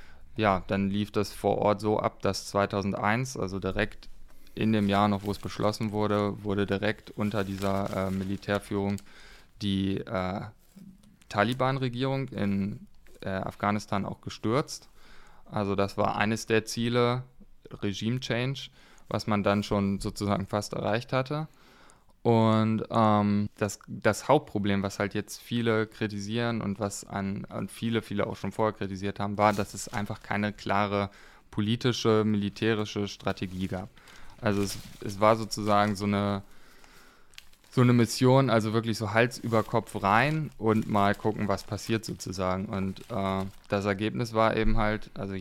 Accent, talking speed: German, 145 wpm